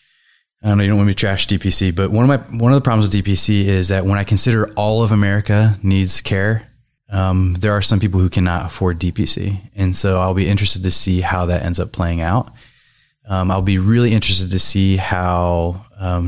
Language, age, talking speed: English, 20-39, 220 wpm